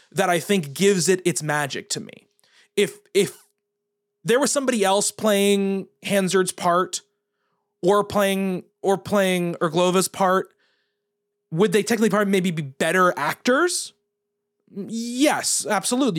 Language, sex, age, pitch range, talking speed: English, male, 20-39, 180-220 Hz, 125 wpm